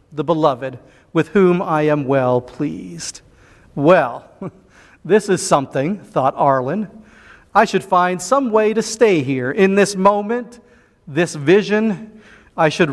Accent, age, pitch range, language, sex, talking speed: American, 40-59, 155-195 Hz, English, male, 135 wpm